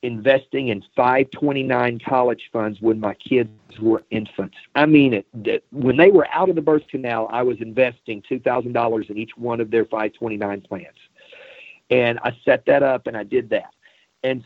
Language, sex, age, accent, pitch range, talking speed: English, male, 50-69, American, 120-165 Hz, 185 wpm